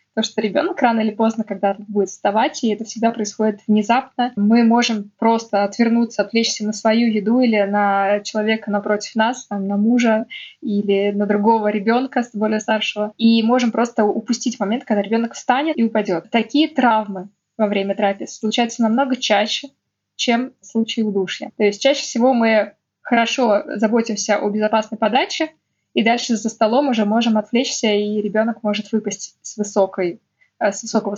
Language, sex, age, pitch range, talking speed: Russian, female, 20-39, 205-240 Hz, 160 wpm